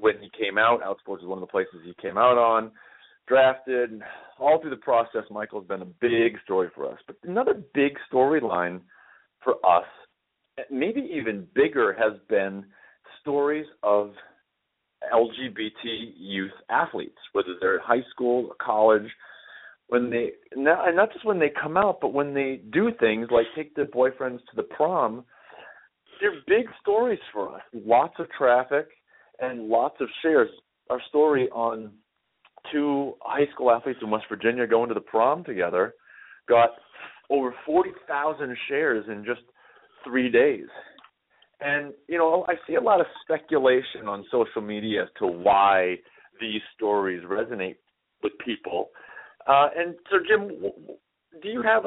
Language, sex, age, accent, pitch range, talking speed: English, male, 40-59, American, 110-170 Hz, 155 wpm